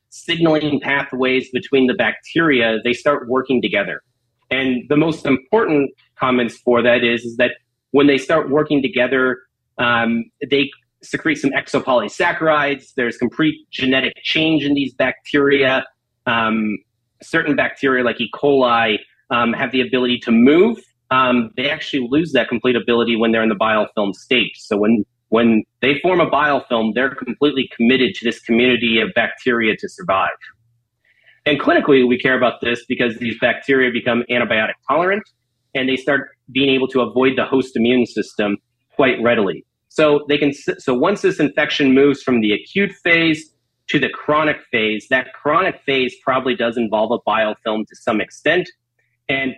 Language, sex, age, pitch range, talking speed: English, male, 30-49, 120-145 Hz, 160 wpm